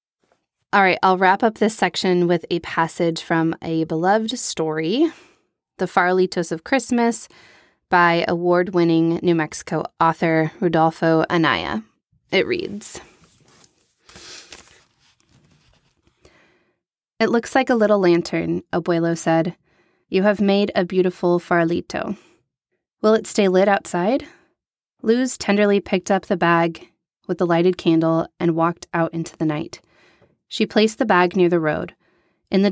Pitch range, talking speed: 165-200 Hz, 130 wpm